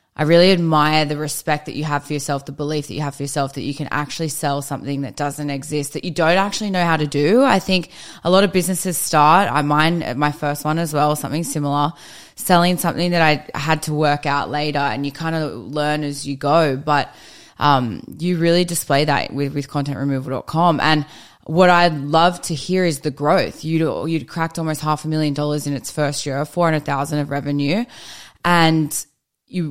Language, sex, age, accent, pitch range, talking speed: English, female, 10-29, Australian, 145-170 Hz, 210 wpm